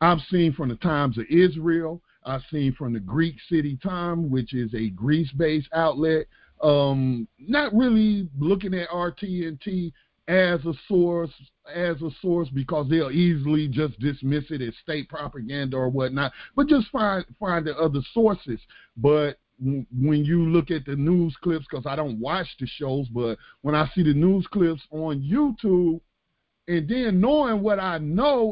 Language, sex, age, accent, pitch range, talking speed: English, male, 50-69, American, 140-195 Hz, 170 wpm